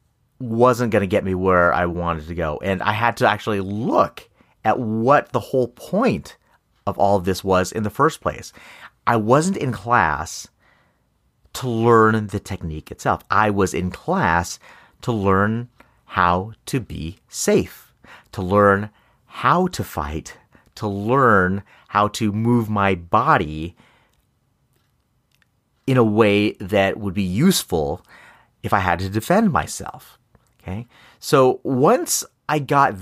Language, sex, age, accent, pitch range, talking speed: English, male, 30-49, American, 95-125 Hz, 145 wpm